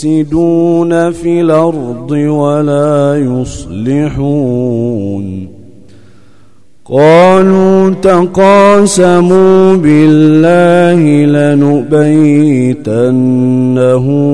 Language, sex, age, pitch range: Arabic, male, 40-59, 130-175 Hz